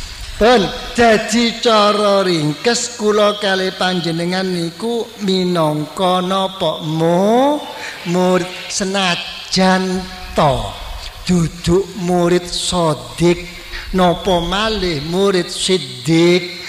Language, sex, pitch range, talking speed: Indonesian, male, 160-215 Hz, 70 wpm